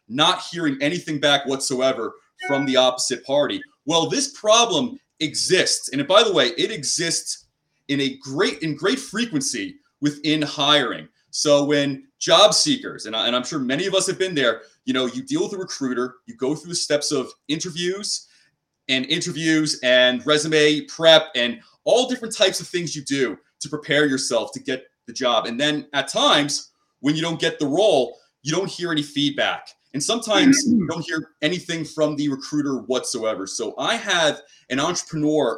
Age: 30-49